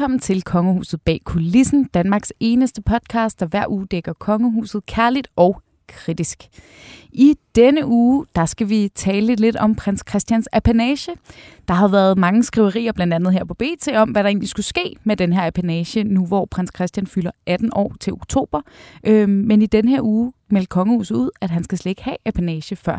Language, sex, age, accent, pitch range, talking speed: Danish, female, 20-39, native, 185-245 Hz, 190 wpm